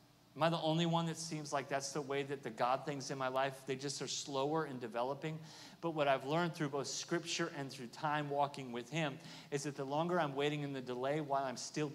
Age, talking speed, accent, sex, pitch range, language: 40-59, 245 wpm, American, male, 140-170 Hz, English